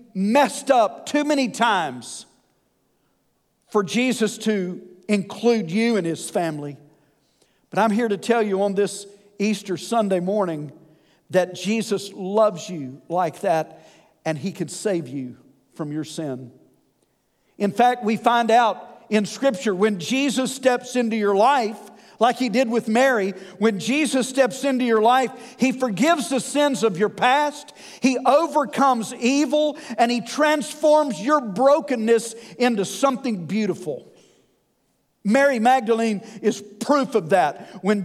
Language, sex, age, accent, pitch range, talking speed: English, male, 50-69, American, 200-260 Hz, 135 wpm